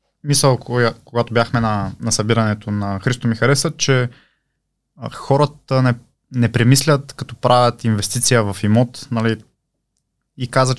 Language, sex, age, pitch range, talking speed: Bulgarian, male, 20-39, 110-135 Hz, 130 wpm